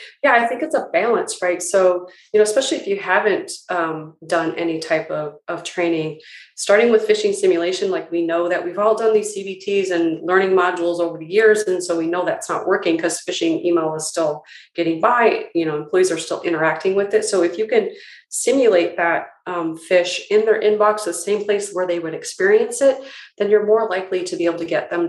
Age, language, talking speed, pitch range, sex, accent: 30-49, English, 220 wpm, 170-240 Hz, female, American